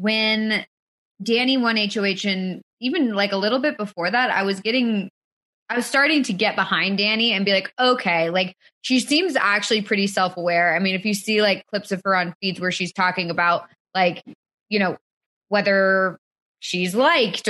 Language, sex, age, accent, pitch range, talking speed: English, female, 20-39, American, 185-230 Hz, 185 wpm